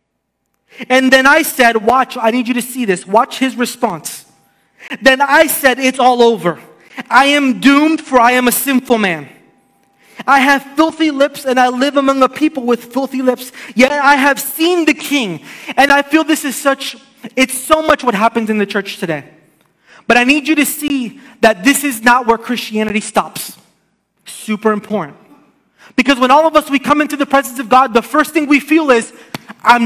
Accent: American